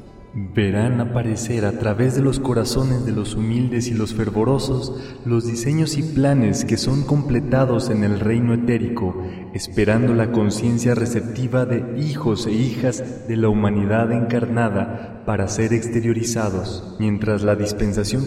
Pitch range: 105-130 Hz